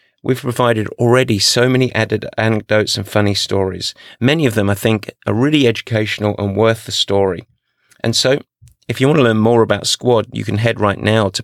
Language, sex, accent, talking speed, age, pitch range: English, male, British, 200 wpm, 30-49, 105-125 Hz